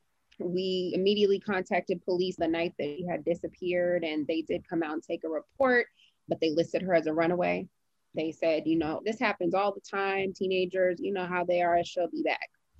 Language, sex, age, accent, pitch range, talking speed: English, female, 20-39, American, 165-195 Hz, 205 wpm